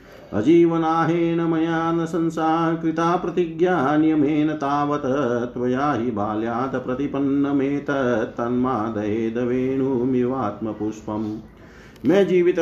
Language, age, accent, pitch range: Hindi, 40-59, native, 125-155 Hz